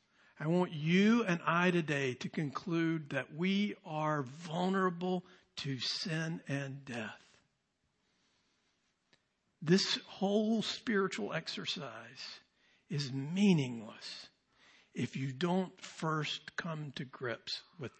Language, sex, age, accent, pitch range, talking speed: English, male, 60-79, American, 145-190 Hz, 100 wpm